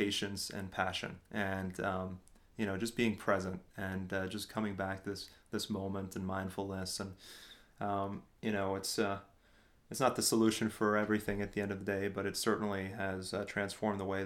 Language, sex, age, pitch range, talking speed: English, male, 30-49, 95-105 Hz, 195 wpm